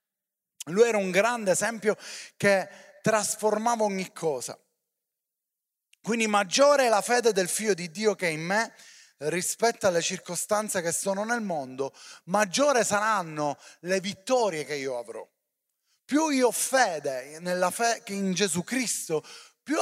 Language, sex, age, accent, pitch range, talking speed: Italian, male, 30-49, native, 170-230 Hz, 140 wpm